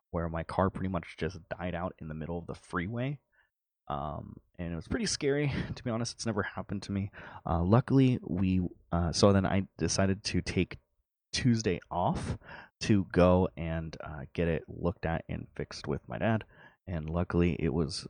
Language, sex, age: English, male, 20-39